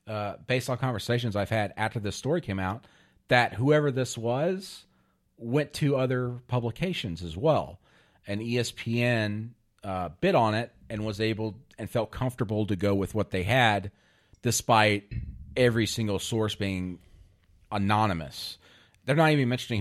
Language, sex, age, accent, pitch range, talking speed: English, male, 40-59, American, 105-130 Hz, 150 wpm